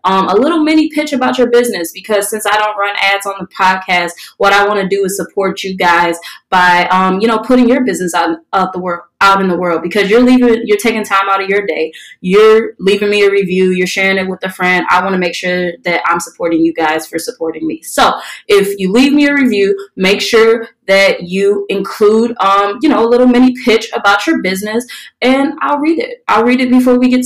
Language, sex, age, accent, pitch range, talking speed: English, female, 20-39, American, 180-225 Hz, 235 wpm